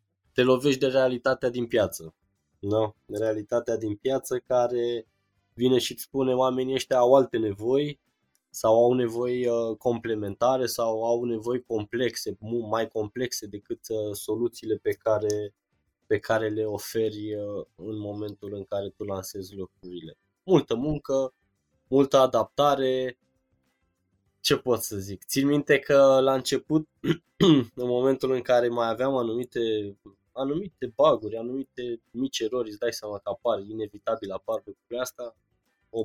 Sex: male